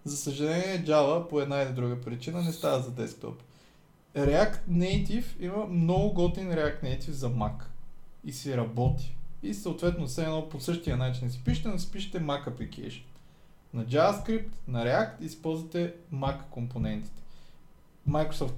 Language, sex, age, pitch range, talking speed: Bulgarian, male, 20-39, 140-190 Hz, 150 wpm